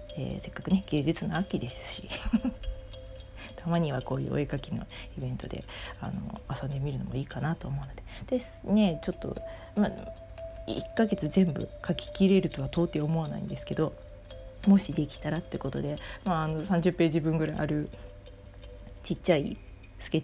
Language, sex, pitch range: Japanese, female, 135-185 Hz